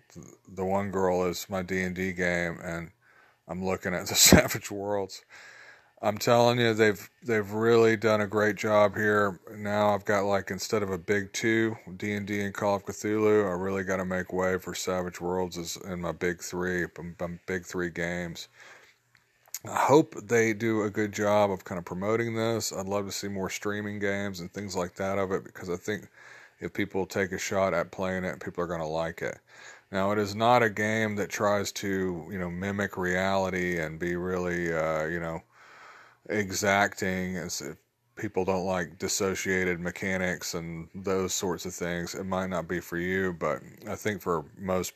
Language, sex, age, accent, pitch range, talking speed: English, male, 40-59, American, 90-105 Hz, 190 wpm